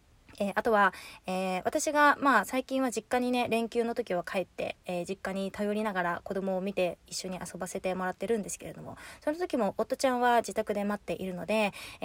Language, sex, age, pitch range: Japanese, female, 20-39, 185-250 Hz